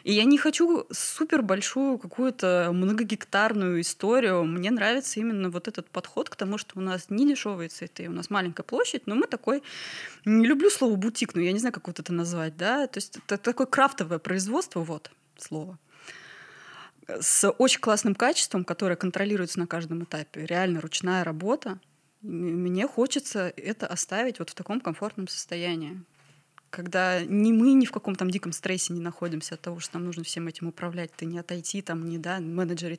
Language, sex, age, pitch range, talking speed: Russian, female, 20-39, 175-235 Hz, 180 wpm